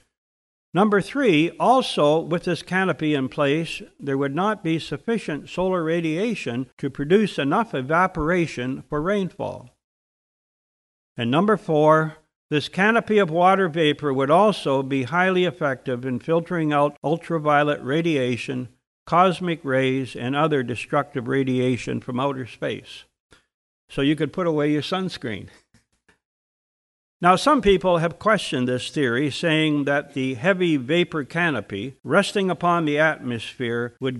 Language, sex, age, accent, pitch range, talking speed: English, male, 60-79, American, 130-175 Hz, 130 wpm